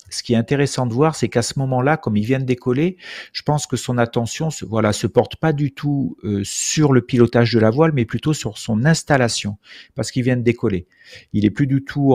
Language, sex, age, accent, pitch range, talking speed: French, male, 40-59, French, 110-140 Hz, 240 wpm